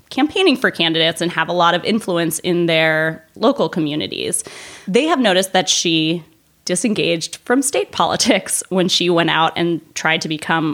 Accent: American